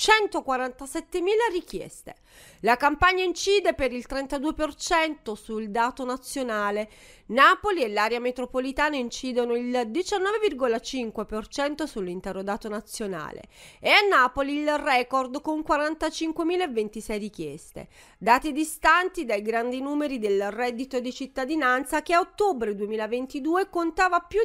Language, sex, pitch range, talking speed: Italian, female, 235-330 Hz, 105 wpm